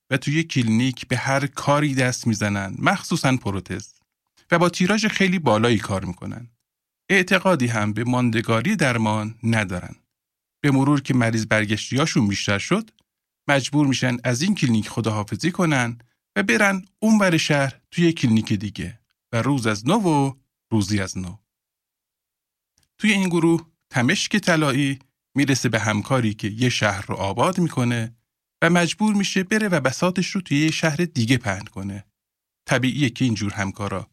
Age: 50-69